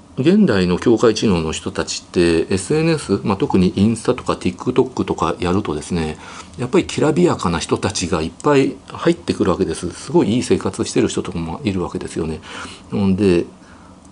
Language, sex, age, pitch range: Japanese, male, 50-69, 90-125 Hz